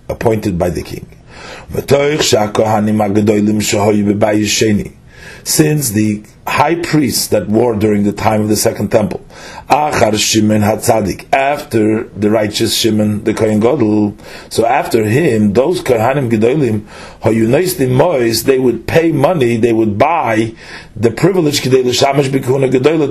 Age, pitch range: 40-59, 110-145 Hz